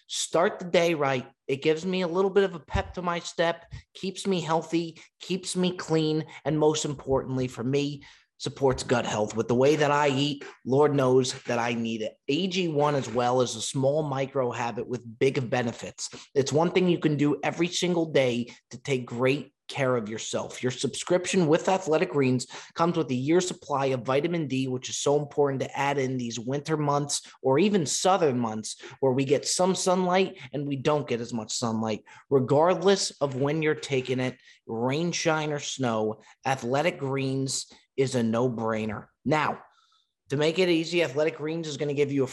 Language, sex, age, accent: English, male, 20-39, American